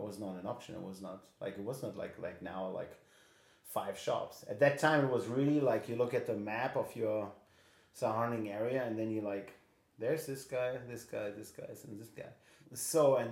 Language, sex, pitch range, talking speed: English, male, 95-115 Hz, 215 wpm